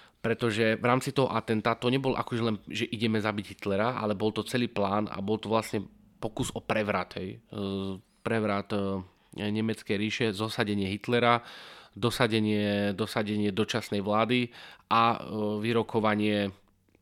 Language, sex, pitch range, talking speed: English, male, 105-120 Hz, 125 wpm